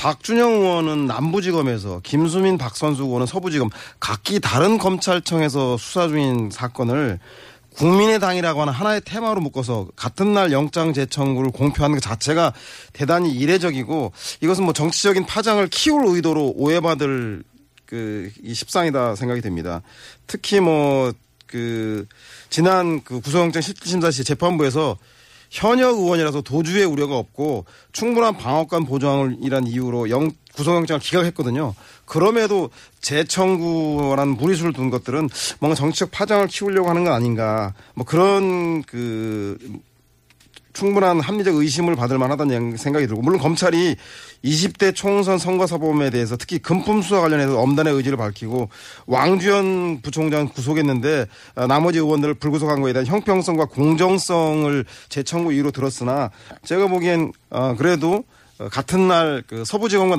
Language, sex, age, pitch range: Korean, male, 40-59, 125-175 Hz